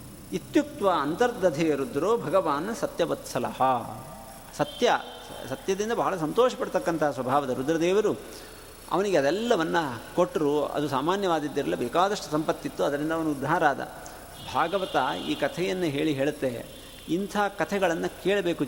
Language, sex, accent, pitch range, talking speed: Kannada, male, native, 155-210 Hz, 100 wpm